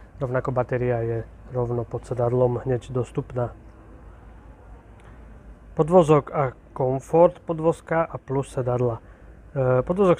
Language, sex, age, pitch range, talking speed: Slovak, male, 30-49, 120-140 Hz, 95 wpm